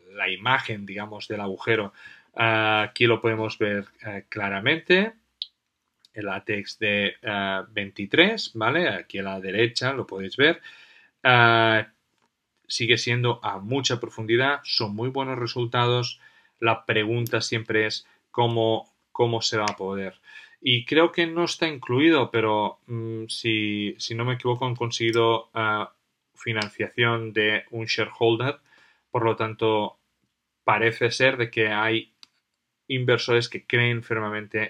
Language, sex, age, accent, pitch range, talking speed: Spanish, male, 30-49, Spanish, 105-120 Hz, 125 wpm